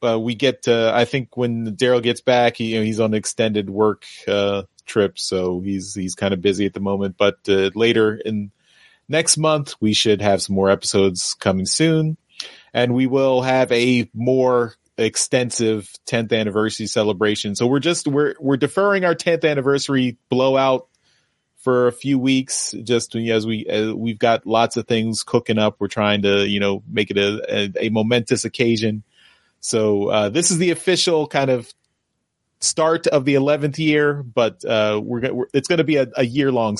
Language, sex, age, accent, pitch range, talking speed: English, male, 30-49, American, 105-135 Hz, 190 wpm